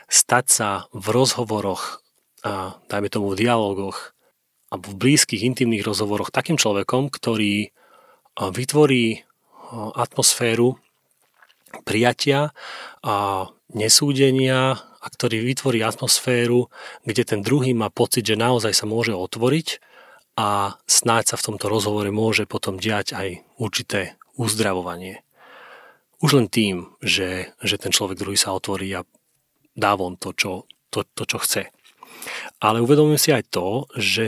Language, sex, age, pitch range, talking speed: Slovak, male, 30-49, 100-125 Hz, 125 wpm